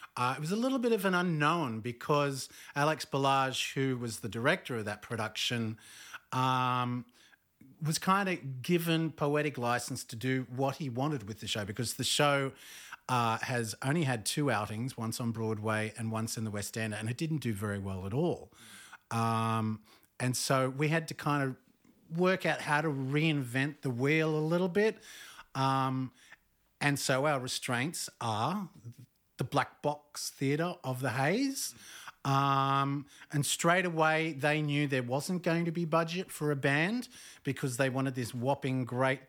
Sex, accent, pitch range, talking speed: male, Australian, 125-155 Hz, 170 wpm